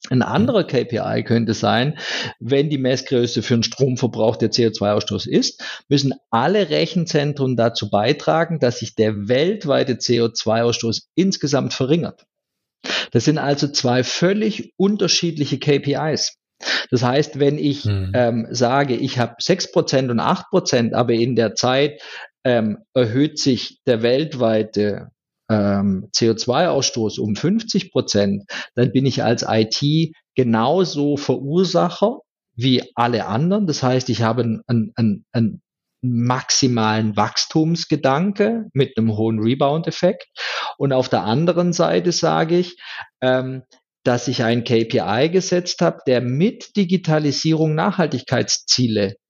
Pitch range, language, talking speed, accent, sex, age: 115-160 Hz, German, 115 wpm, German, male, 50-69